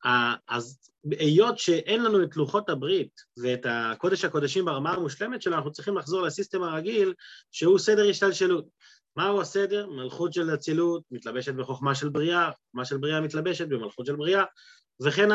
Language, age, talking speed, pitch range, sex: Hebrew, 30-49, 150 wpm, 155-215 Hz, male